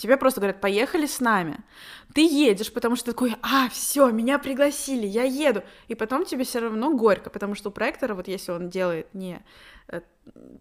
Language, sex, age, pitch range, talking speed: Russian, female, 20-39, 200-255 Hz, 190 wpm